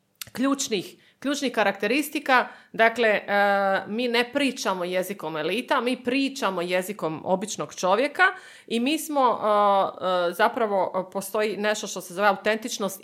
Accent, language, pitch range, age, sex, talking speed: native, Croatian, 180-225 Hz, 30-49, female, 110 wpm